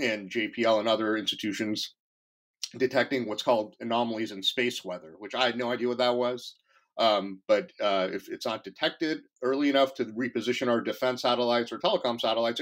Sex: male